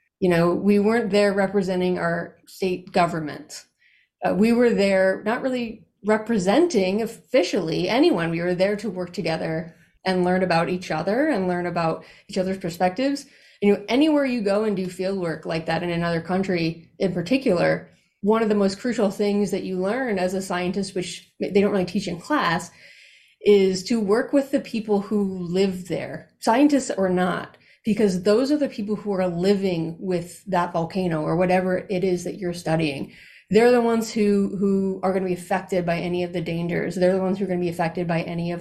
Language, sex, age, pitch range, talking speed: English, female, 30-49, 175-210 Hz, 195 wpm